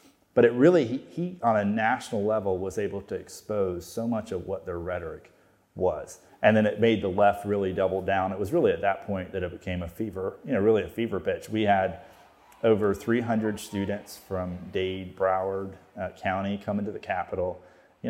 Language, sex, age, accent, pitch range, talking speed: English, male, 30-49, American, 95-115 Hz, 200 wpm